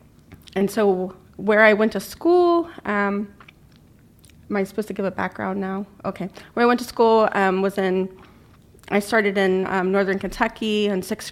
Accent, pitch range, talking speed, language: American, 180-205 Hz, 175 wpm, English